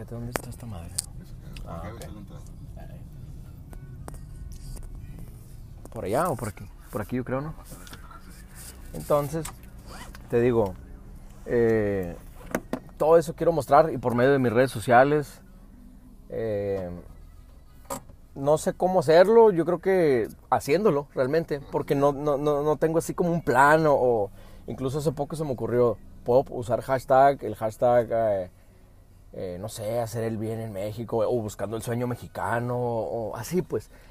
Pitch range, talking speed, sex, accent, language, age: 105-145 Hz, 140 wpm, male, Mexican, Spanish, 30-49